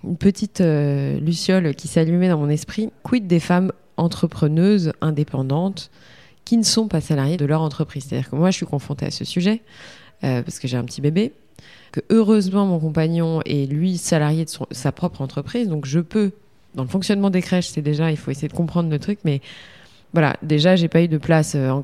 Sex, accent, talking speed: female, French, 215 wpm